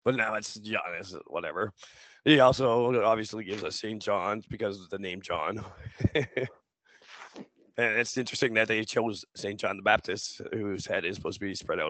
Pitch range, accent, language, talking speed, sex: 105-120 Hz, American, English, 180 wpm, male